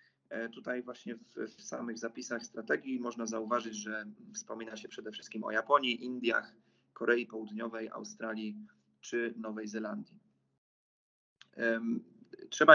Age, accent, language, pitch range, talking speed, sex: 30-49, native, Polish, 110-145 Hz, 115 wpm, male